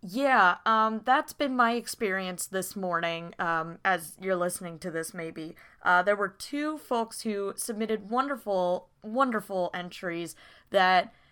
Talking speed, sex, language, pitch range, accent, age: 140 wpm, female, English, 180-230 Hz, American, 20-39